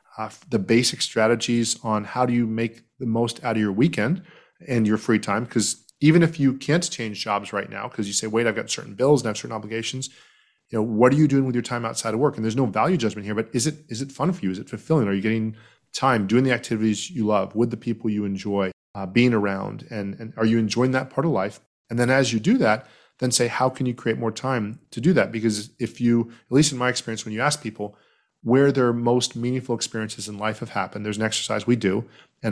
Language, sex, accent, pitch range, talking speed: English, male, American, 110-130 Hz, 260 wpm